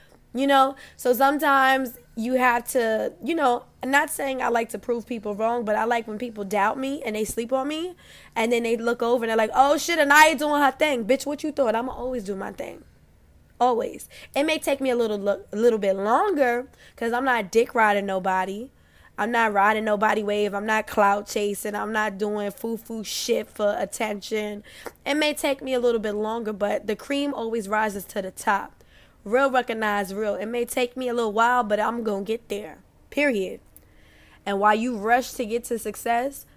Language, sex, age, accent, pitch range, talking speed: English, female, 10-29, American, 205-245 Hz, 210 wpm